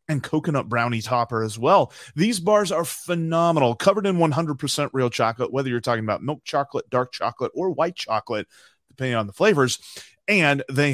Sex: male